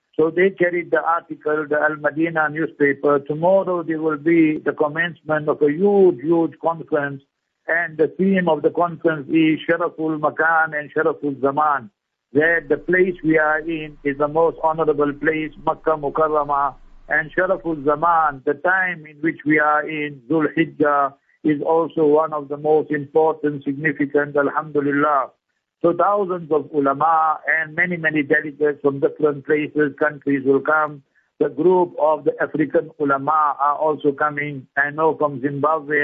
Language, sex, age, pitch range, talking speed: English, male, 60-79, 145-160 Hz, 155 wpm